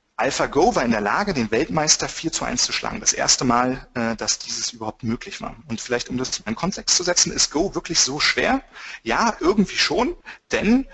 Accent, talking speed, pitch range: German, 210 wpm, 125-170 Hz